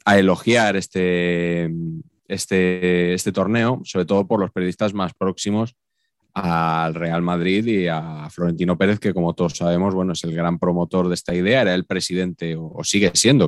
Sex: male